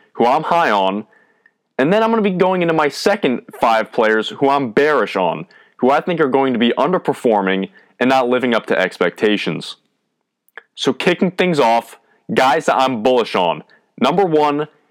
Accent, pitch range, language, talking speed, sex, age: American, 115-160 Hz, English, 180 wpm, male, 20-39